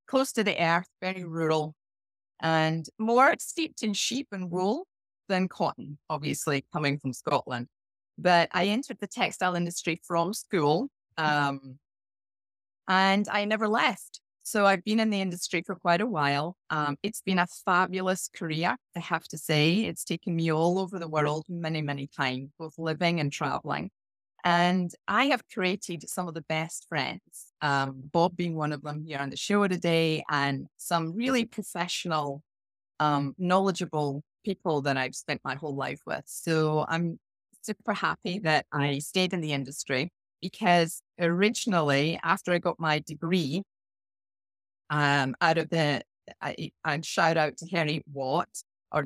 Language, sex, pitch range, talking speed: English, female, 145-185 Hz, 155 wpm